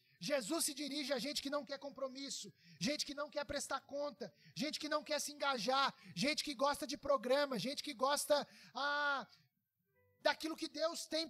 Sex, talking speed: male, 180 wpm